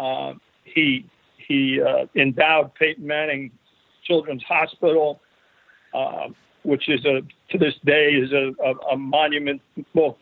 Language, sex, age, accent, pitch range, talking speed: English, male, 50-69, American, 145-170 Hz, 135 wpm